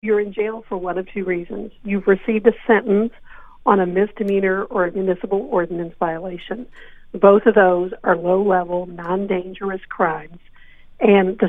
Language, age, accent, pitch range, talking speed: English, 50-69, American, 180-215 Hz, 155 wpm